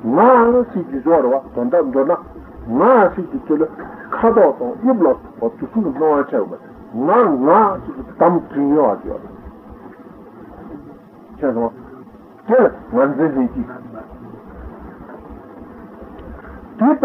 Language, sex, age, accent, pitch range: Italian, male, 60-79, Indian, 160-255 Hz